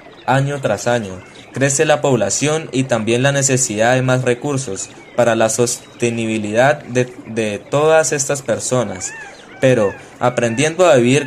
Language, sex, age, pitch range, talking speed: Spanish, male, 20-39, 120-145 Hz, 135 wpm